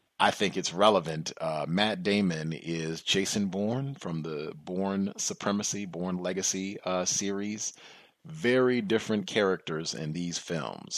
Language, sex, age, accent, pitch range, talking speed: English, male, 30-49, American, 80-100 Hz, 130 wpm